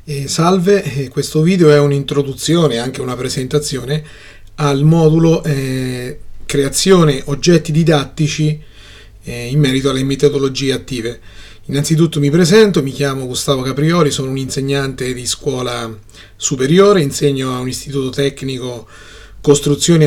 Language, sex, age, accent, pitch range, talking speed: Italian, male, 30-49, native, 125-150 Hz, 110 wpm